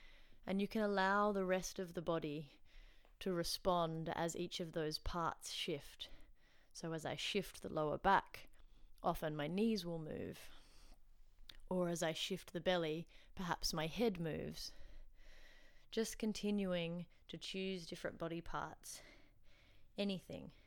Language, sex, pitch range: English, female, 155-180 Hz